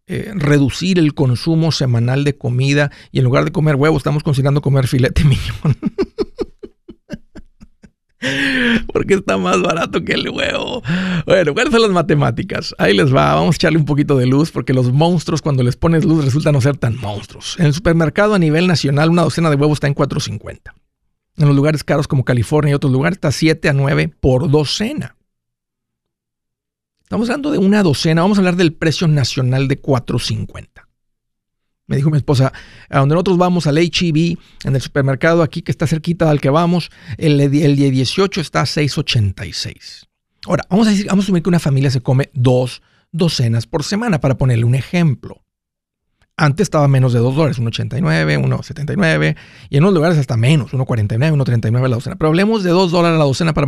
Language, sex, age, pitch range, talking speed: Spanish, male, 50-69, 130-165 Hz, 185 wpm